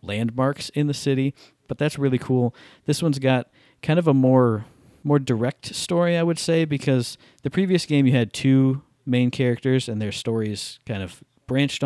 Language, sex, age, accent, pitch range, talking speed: English, male, 40-59, American, 115-140 Hz, 180 wpm